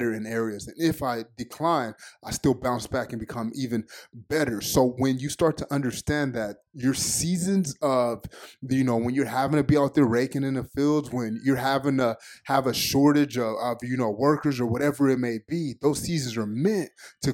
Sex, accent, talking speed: male, American, 205 wpm